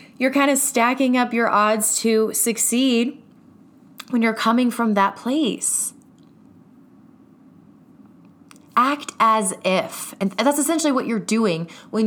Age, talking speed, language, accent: 20-39, 125 wpm, English, American